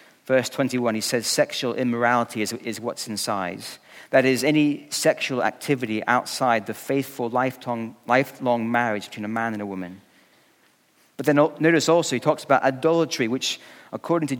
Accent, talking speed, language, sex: British, 155 wpm, English, male